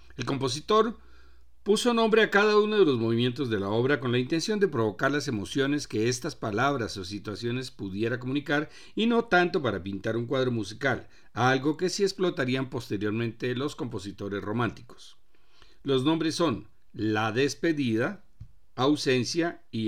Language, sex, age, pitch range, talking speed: Spanish, male, 50-69, 115-155 Hz, 150 wpm